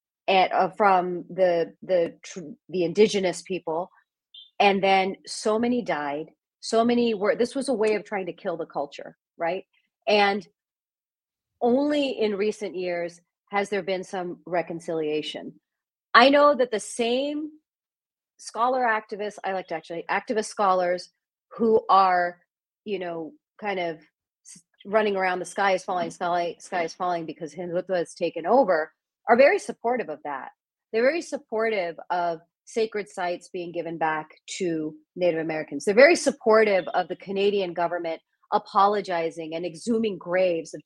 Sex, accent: female, American